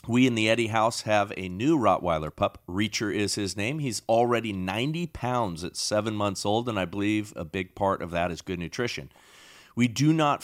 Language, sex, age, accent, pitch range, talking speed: English, male, 40-59, American, 95-125 Hz, 205 wpm